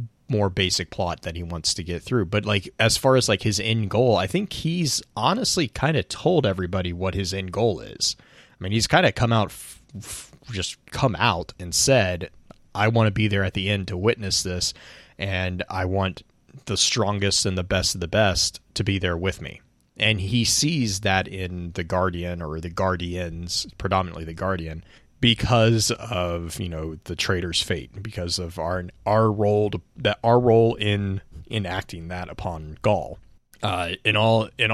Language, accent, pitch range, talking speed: English, American, 90-110 Hz, 185 wpm